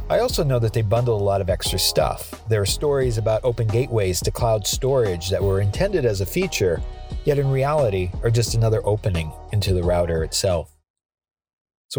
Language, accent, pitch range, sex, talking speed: English, American, 100-135 Hz, male, 190 wpm